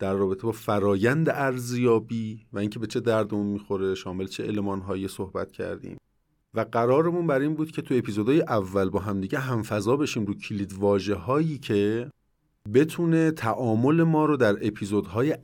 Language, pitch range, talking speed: Persian, 95-125 Hz, 160 wpm